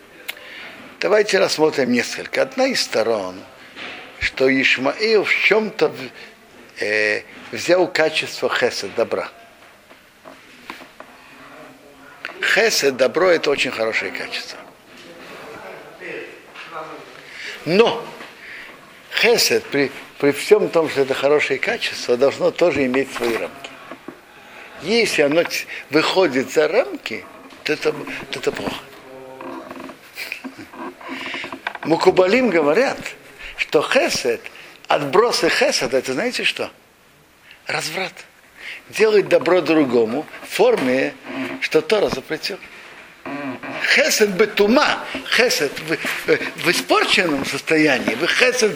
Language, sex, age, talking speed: Russian, male, 60-79, 85 wpm